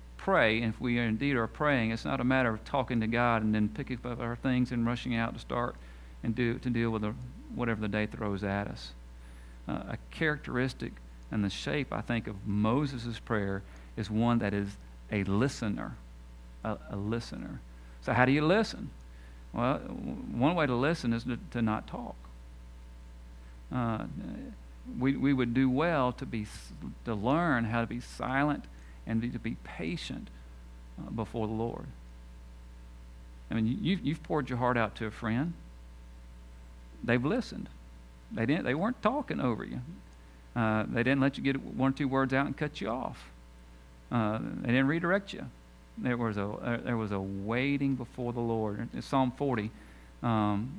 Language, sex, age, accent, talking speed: English, male, 50-69, American, 175 wpm